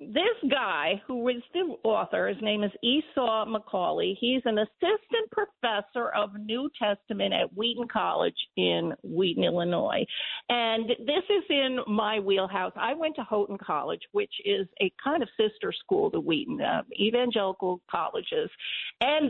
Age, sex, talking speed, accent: 50-69, female, 150 wpm, American